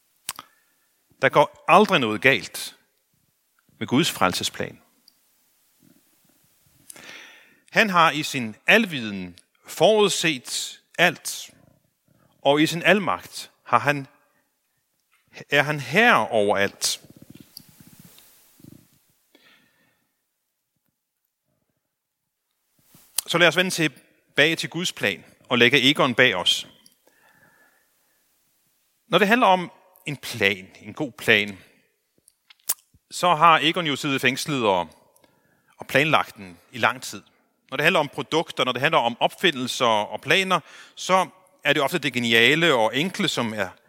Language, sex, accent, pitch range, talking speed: Danish, male, native, 130-185 Hz, 110 wpm